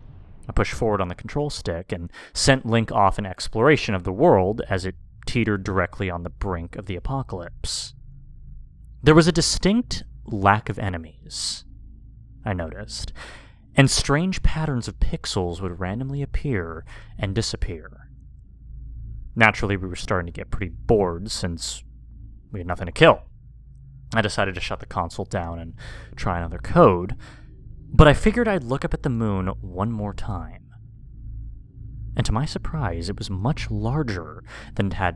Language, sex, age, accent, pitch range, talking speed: English, male, 30-49, American, 90-120 Hz, 160 wpm